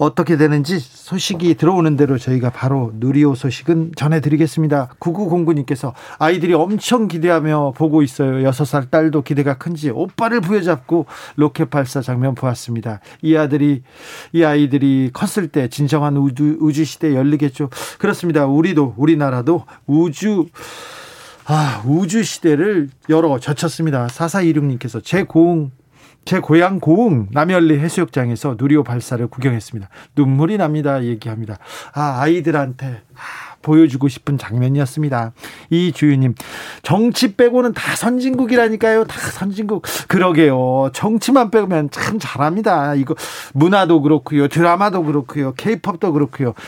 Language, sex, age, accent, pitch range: Korean, male, 40-59, native, 135-175 Hz